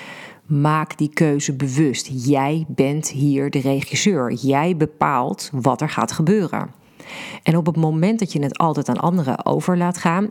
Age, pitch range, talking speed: 40-59, 140-180 Hz, 165 wpm